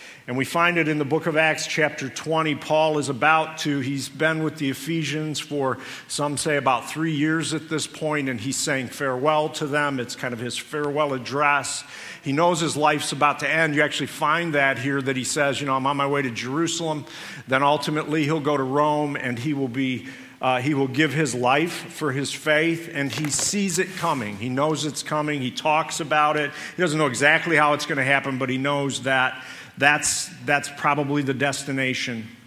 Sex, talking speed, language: male, 210 wpm, English